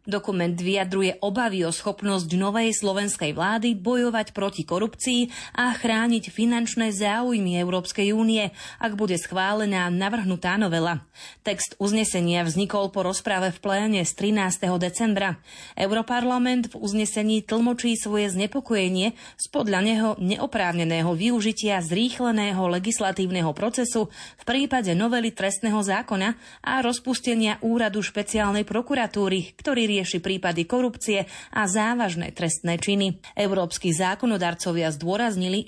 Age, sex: 30-49, female